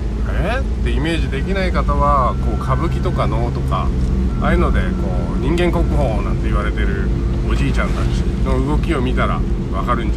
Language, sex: Japanese, male